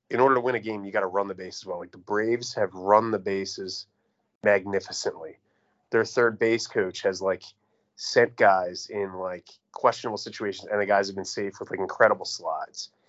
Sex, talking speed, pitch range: male, 195 wpm, 100-120 Hz